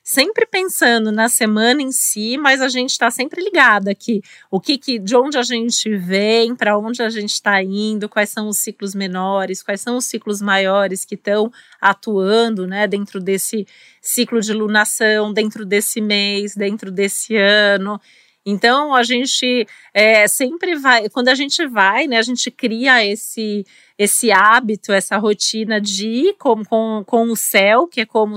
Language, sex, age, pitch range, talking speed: Portuguese, female, 40-59, 210-245 Hz, 170 wpm